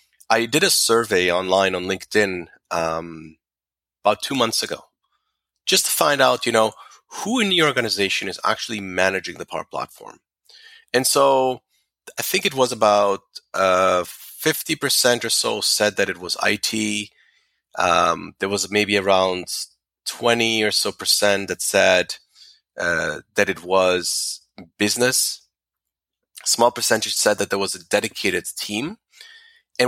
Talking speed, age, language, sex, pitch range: 140 wpm, 30-49, English, male, 95-130 Hz